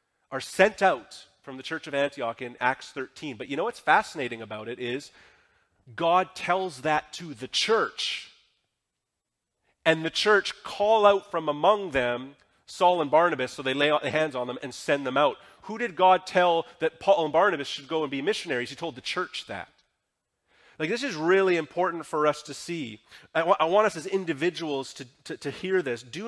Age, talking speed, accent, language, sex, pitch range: 30-49, 200 wpm, American, English, male, 145-185 Hz